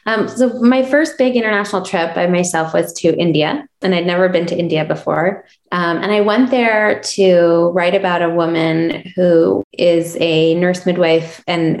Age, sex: 20-39, female